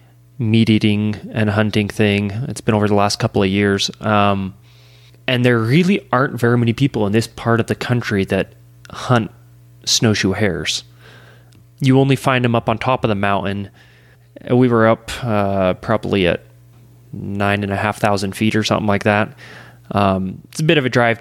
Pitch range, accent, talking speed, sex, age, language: 100-120 Hz, American, 180 wpm, male, 20-39, English